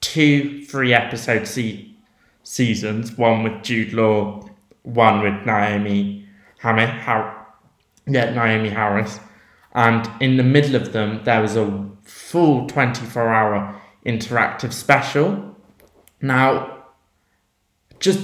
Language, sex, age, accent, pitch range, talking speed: English, male, 20-39, British, 110-125 Hz, 90 wpm